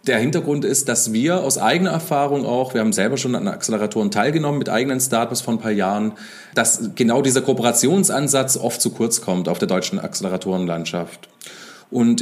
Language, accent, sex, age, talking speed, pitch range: German, German, male, 30-49, 175 wpm, 115-160 Hz